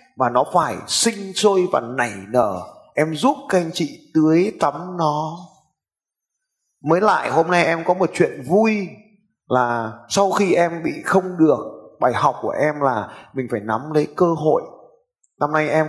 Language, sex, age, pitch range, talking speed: Vietnamese, male, 20-39, 120-165 Hz, 175 wpm